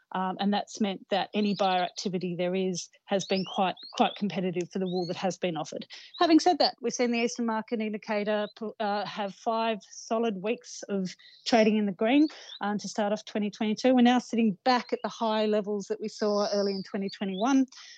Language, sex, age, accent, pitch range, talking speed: English, female, 30-49, Australian, 200-230 Hz, 200 wpm